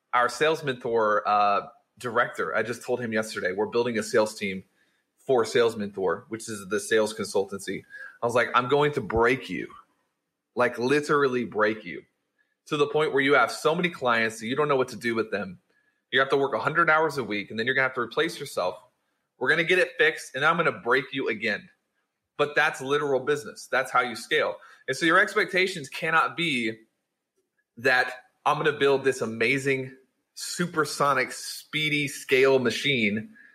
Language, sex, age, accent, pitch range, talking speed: English, male, 30-49, American, 110-165 Hz, 195 wpm